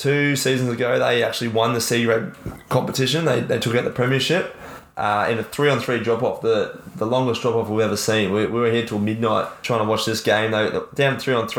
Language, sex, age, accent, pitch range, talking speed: English, male, 20-39, Australian, 105-120 Hz, 215 wpm